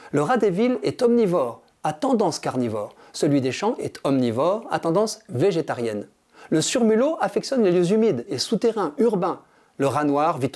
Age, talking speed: 50-69, 170 wpm